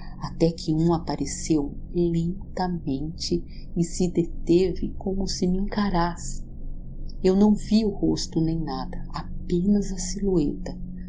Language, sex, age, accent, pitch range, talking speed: Portuguese, female, 40-59, Brazilian, 130-165 Hz, 120 wpm